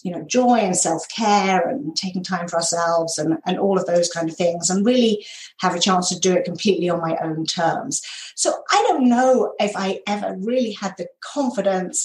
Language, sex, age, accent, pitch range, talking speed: English, female, 40-59, British, 175-225 Hz, 210 wpm